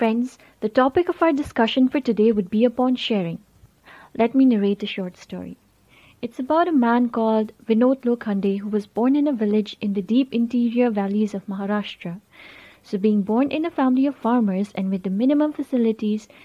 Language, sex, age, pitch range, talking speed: Hindi, female, 20-39, 205-265 Hz, 185 wpm